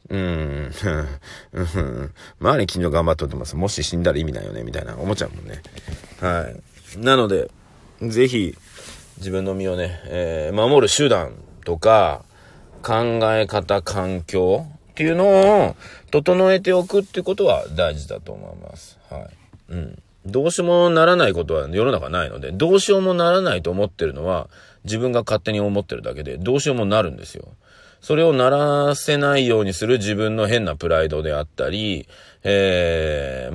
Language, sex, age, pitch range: Japanese, male, 40-59, 80-120 Hz